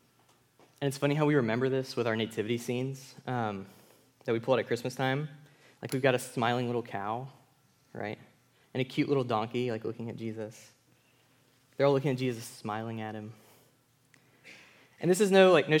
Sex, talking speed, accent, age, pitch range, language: male, 185 wpm, American, 20-39, 120-160 Hz, English